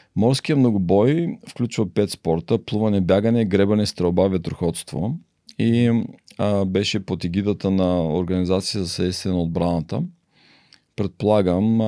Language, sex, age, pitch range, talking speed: Bulgarian, male, 40-59, 90-110 Hz, 105 wpm